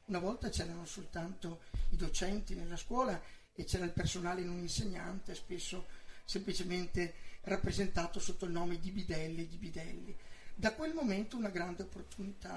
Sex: male